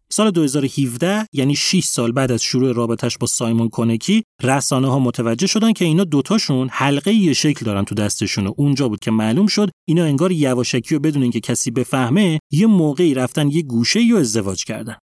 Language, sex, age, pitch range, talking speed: Persian, male, 30-49, 120-175 Hz, 190 wpm